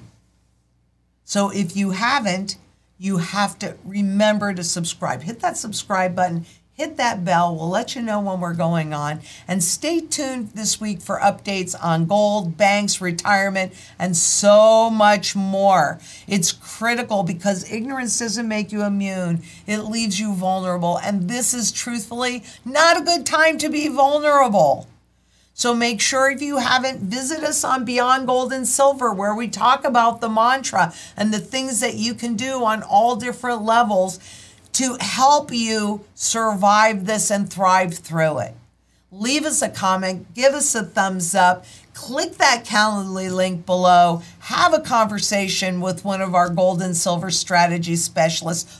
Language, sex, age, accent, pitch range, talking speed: English, female, 50-69, American, 180-235 Hz, 155 wpm